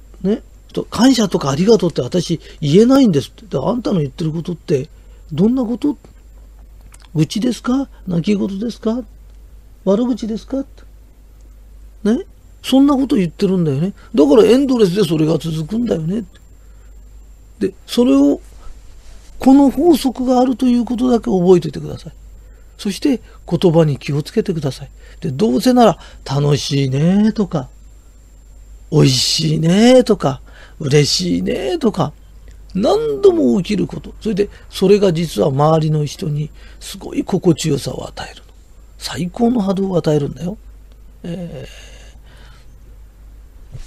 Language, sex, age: Japanese, male, 40-59